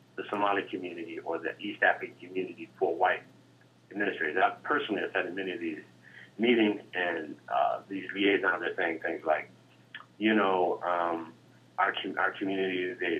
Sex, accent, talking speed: male, American, 160 wpm